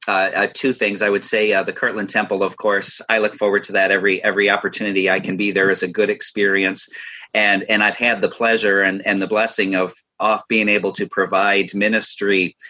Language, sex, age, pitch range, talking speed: English, male, 40-59, 95-110 Hz, 215 wpm